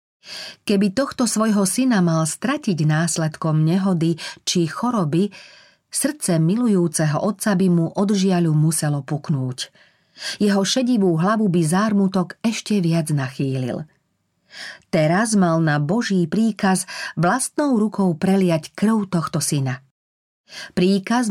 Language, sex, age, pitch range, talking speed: Slovak, female, 40-59, 160-205 Hz, 105 wpm